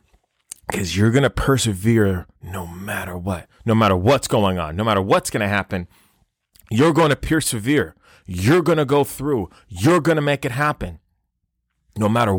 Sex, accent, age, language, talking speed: male, American, 30-49, English, 175 wpm